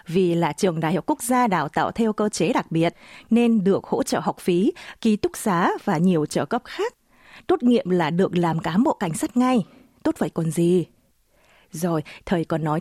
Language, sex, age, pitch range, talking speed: Vietnamese, female, 20-39, 170-245 Hz, 215 wpm